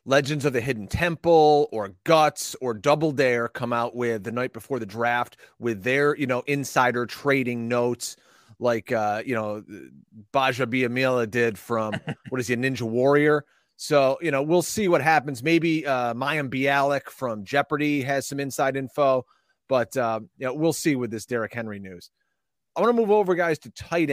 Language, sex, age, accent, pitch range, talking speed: English, male, 30-49, American, 120-160 Hz, 185 wpm